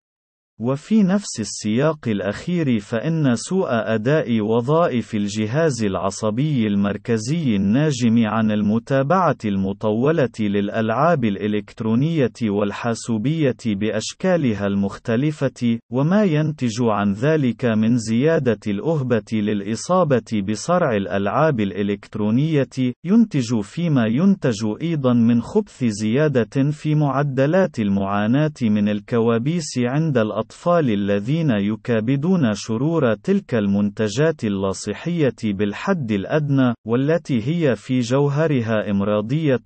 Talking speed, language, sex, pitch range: 85 wpm, Arabic, male, 105-155 Hz